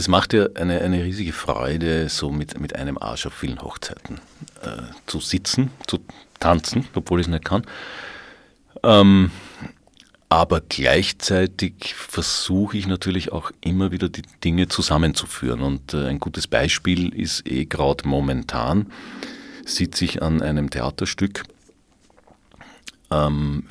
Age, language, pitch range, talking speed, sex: 50-69, German, 75-95 Hz, 130 wpm, male